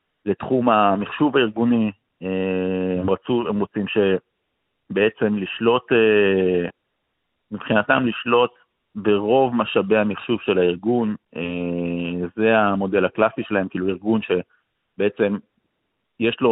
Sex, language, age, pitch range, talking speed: male, Hebrew, 50-69, 95-120 Hz, 85 wpm